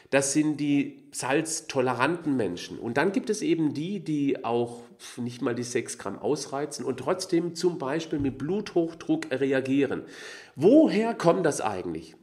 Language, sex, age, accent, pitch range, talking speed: German, male, 40-59, German, 120-170 Hz, 145 wpm